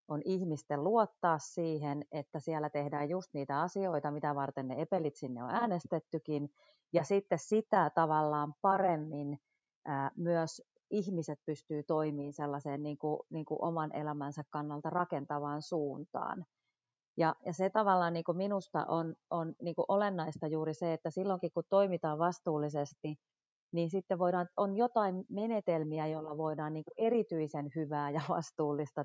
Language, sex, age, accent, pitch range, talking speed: Finnish, female, 30-49, native, 150-190 Hz, 140 wpm